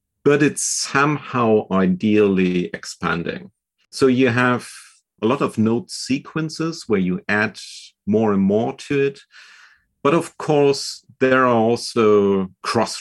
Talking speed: 130 wpm